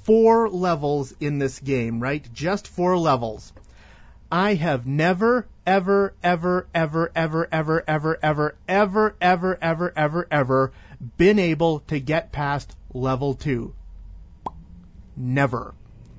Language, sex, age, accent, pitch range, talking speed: English, male, 30-49, American, 125-170 Hz, 120 wpm